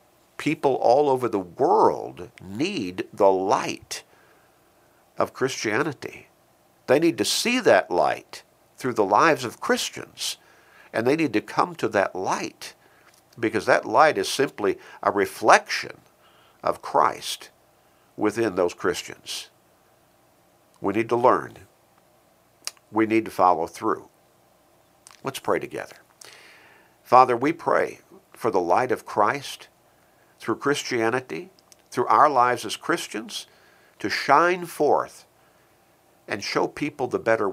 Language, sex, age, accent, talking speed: English, male, 60-79, American, 120 wpm